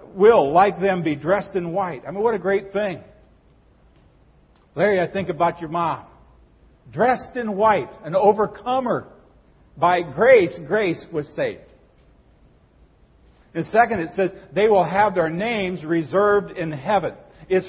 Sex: male